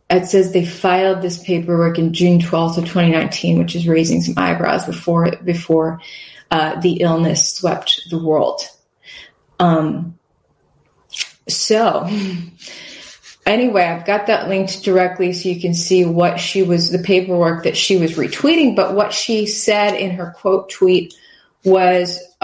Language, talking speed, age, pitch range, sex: English, 145 wpm, 20-39, 170-195 Hz, female